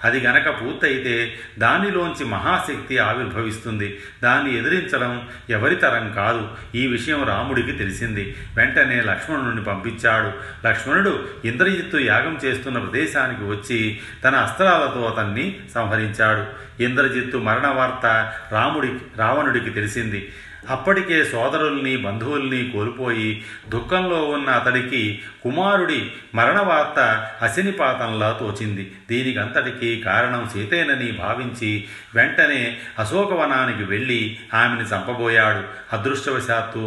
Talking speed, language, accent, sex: 90 wpm, Telugu, native, male